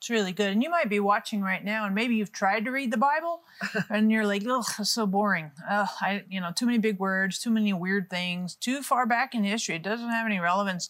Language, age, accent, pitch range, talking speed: English, 40-59, American, 195-235 Hz, 255 wpm